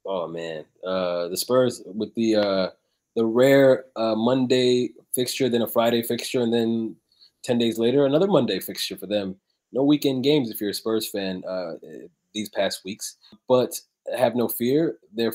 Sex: male